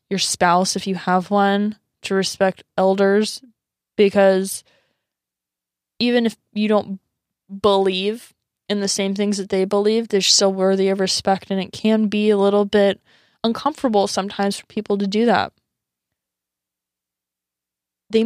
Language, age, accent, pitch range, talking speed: English, 20-39, American, 190-215 Hz, 140 wpm